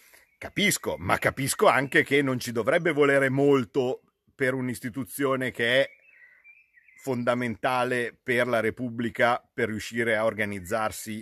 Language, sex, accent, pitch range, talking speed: Italian, male, native, 105-125 Hz, 120 wpm